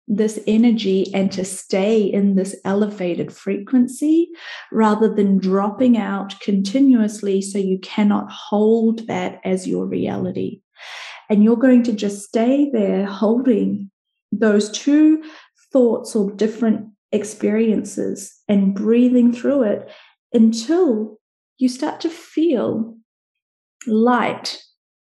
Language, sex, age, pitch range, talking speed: English, female, 30-49, 195-240 Hz, 110 wpm